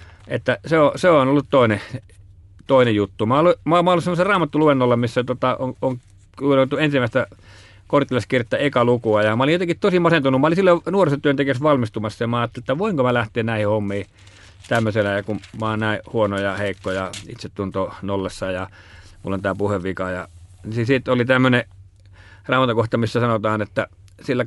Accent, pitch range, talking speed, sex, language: native, 100-130 Hz, 175 wpm, male, Finnish